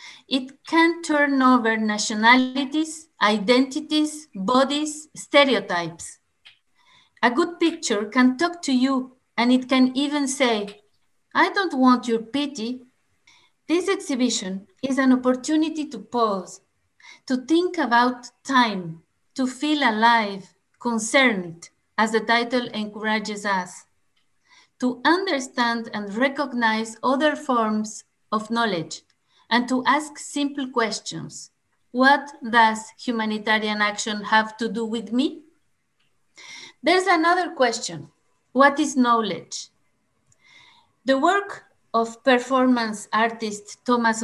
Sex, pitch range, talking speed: female, 220-290 Hz, 105 wpm